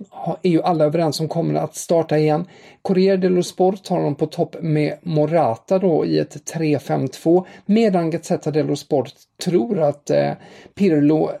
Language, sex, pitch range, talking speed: English, male, 135-170 Hz, 160 wpm